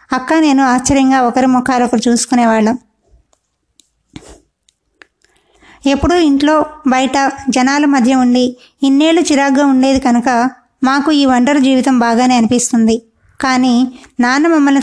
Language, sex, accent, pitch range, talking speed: Telugu, female, native, 245-275 Hz, 105 wpm